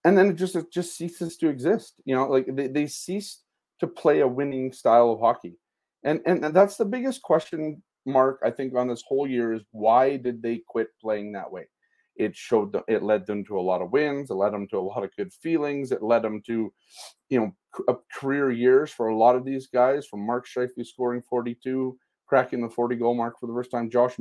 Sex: male